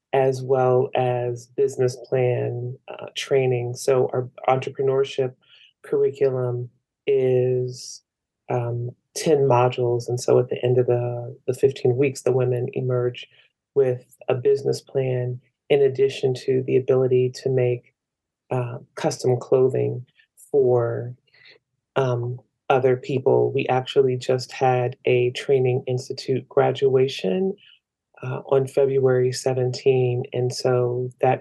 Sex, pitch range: female, 125-135 Hz